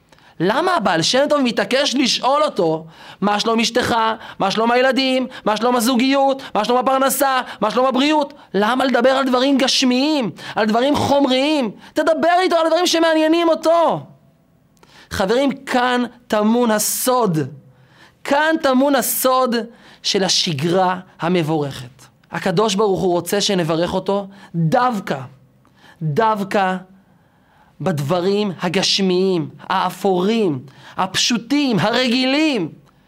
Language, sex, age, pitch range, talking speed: Hebrew, male, 30-49, 185-265 Hz, 105 wpm